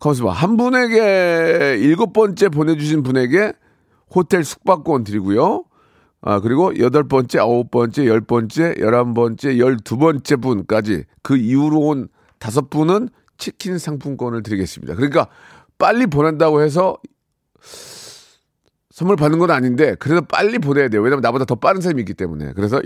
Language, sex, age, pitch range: Korean, male, 40-59, 120-175 Hz